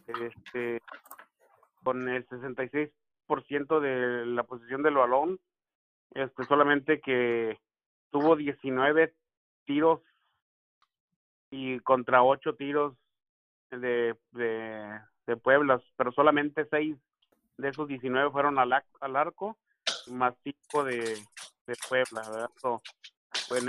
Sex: male